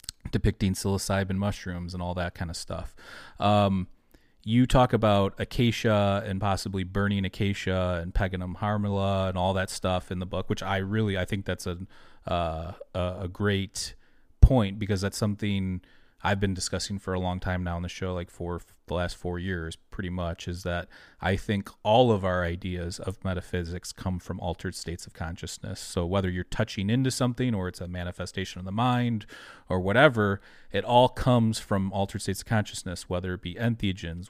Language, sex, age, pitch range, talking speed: English, male, 30-49, 90-105 Hz, 185 wpm